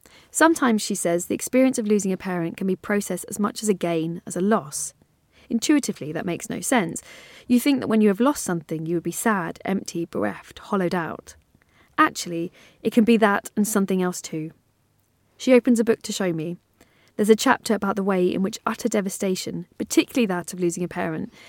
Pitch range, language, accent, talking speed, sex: 175-220 Hz, English, British, 205 wpm, female